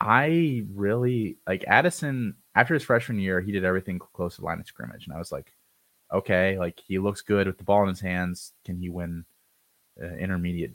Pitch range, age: 90-110 Hz, 30-49